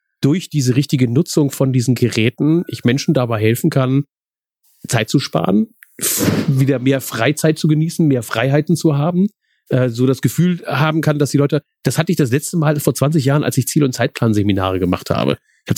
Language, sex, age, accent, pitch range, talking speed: German, male, 40-59, German, 125-155 Hz, 195 wpm